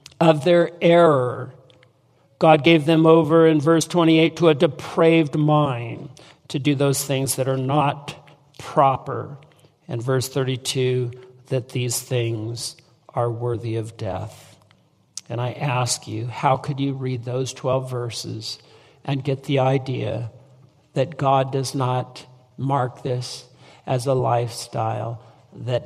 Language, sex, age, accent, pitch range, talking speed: English, male, 50-69, American, 125-160 Hz, 130 wpm